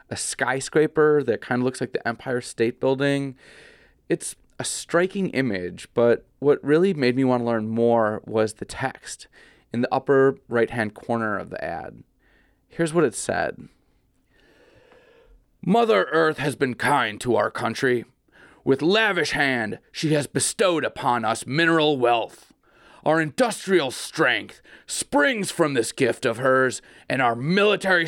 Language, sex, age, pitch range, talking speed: English, male, 30-49, 125-170 Hz, 145 wpm